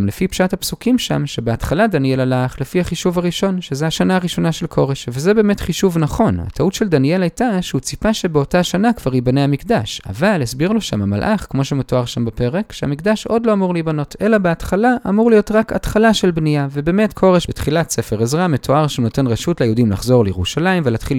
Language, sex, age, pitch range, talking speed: Hebrew, male, 20-39, 125-190 Hz, 185 wpm